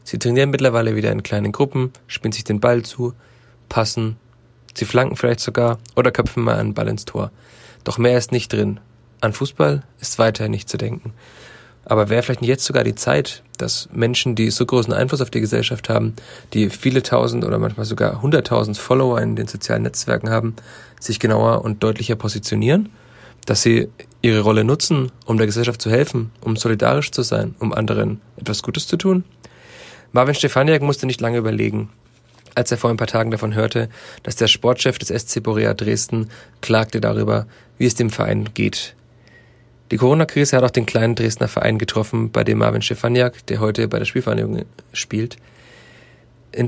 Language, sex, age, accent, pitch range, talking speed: German, male, 30-49, German, 110-125 Hz, 180 wpm